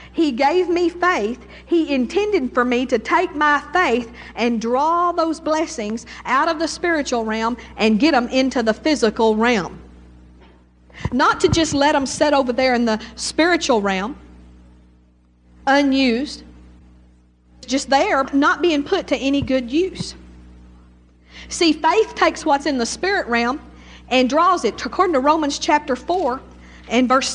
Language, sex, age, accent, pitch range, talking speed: English, female, 50-69, American, 235-315 Hz, 150 wpm